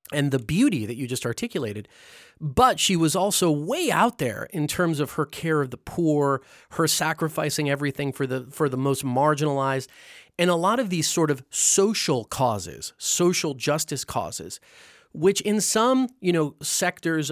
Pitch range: 135-180 Hz